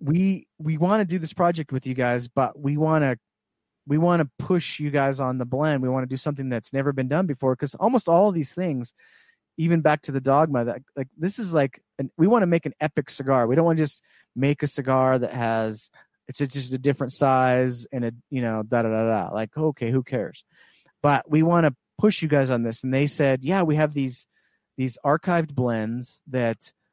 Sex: male